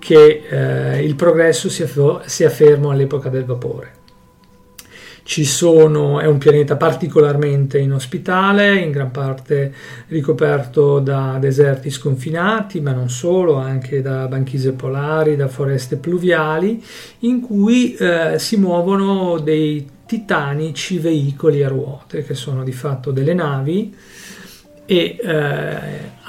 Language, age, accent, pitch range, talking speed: Italian, 40-59, native, 140-170 Hz, 120 wpm